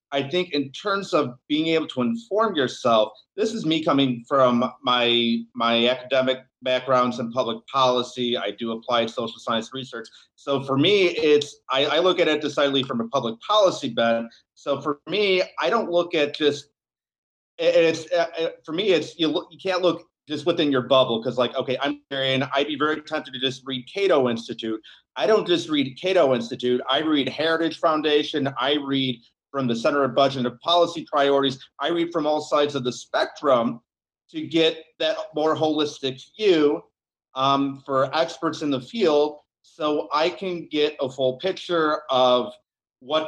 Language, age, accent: English, 30-49, American